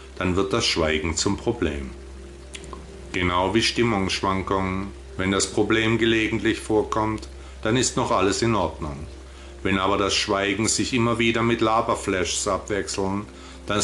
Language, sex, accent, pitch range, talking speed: German, male, German, 75-110 Hz, 135 wpm